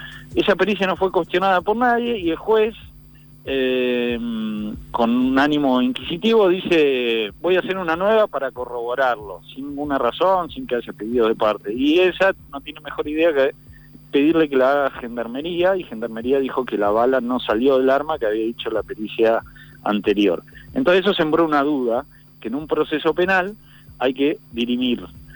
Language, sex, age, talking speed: Spanish, male, 40-59, 175 wpm